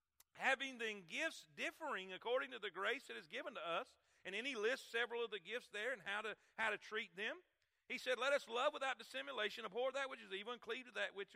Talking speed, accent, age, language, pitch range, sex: 245 wpm, American, 40-59, English, 205-270 Hz, male